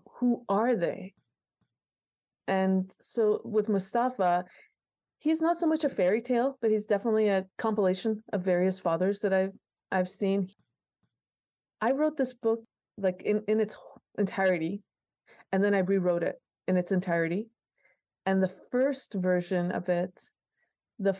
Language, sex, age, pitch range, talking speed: English, female, 30-49, 180-210 Hz, 140 wpm